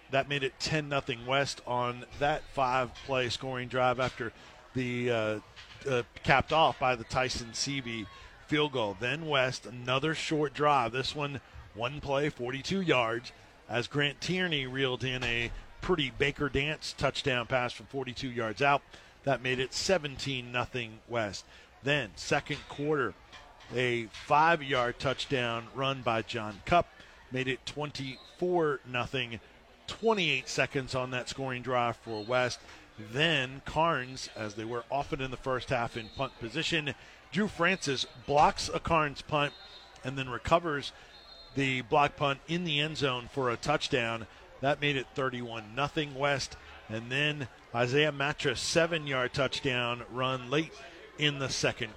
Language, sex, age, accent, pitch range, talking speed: English, male, 40-59, American, 120-145 Hz, 140 wpm